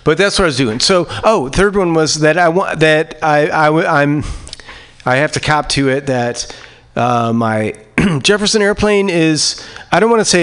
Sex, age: male, 40-59